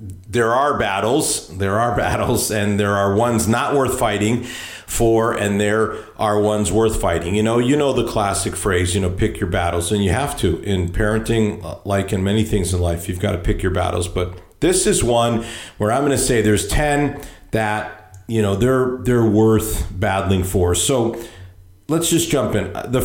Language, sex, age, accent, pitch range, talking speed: English, male, 50-69, American, 100-130 Hz, 190 wpm